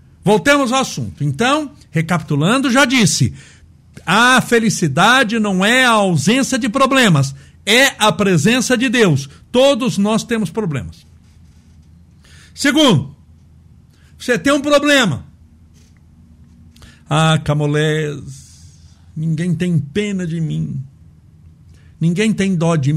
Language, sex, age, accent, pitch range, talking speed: Portuguese, male, 60-79, Brazilian, 130-220 Hz, 105 wpm